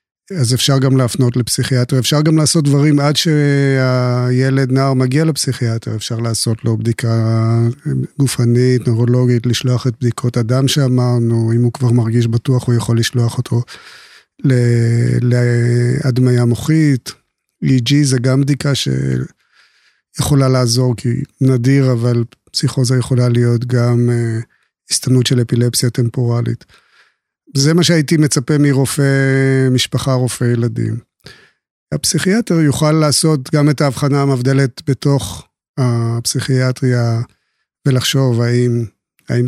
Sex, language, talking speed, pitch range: male, Hebrew, 110 wpm, 120-135 Hz